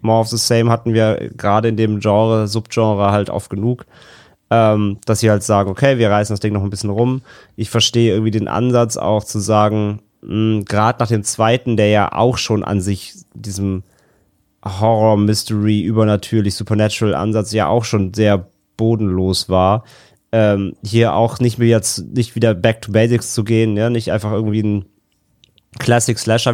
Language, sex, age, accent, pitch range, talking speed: German, male, 30-49, German, 105-115 Hz, 170 wpm